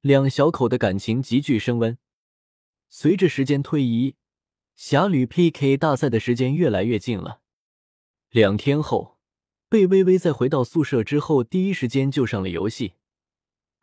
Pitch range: 115-165 Hz